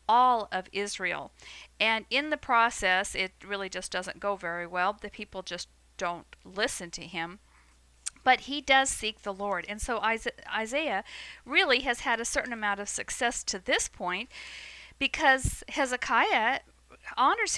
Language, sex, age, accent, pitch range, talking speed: English, female, 50-69, American, 185-245 Hz, 150 wpm